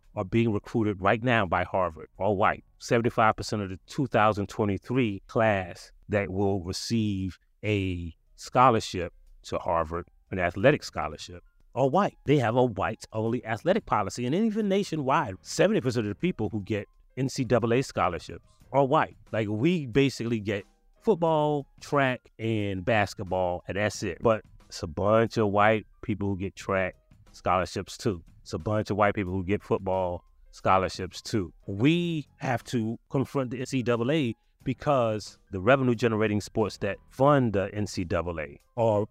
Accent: American